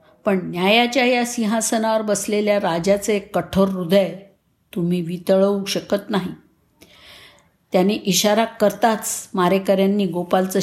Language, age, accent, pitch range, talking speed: Marathi, 50-69, native, 170-210 Hz, 100 wpm